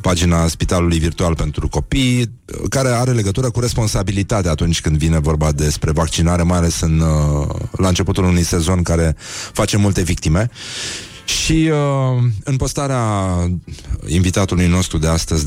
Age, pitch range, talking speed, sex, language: 30-49, 80-105 Hz, 135 wpm, male, Romanian